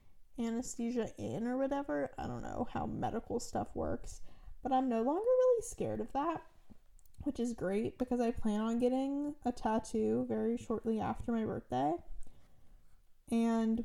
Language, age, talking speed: English, 10-29, 150 wpm